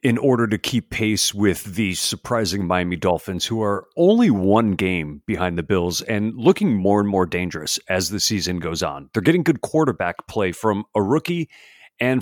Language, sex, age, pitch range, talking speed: English, male, 40-59, 100-145 Hz, 185 wpm